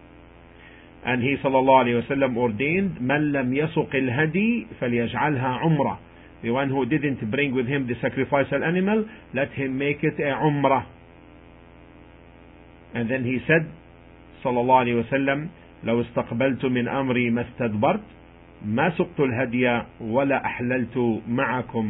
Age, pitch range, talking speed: 50-69, 105-130 Hz, 85 wpm